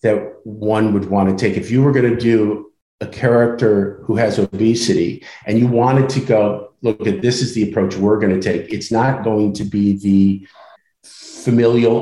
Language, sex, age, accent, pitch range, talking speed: English, male, 50-69, American, 105-130 Hz, 195 wpm